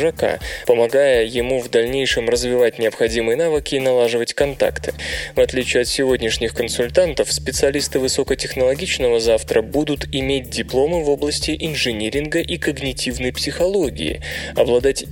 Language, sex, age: Russian, male, 20-39